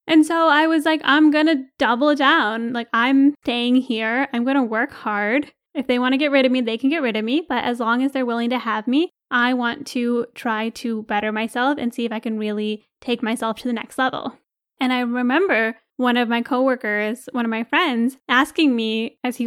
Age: 10-29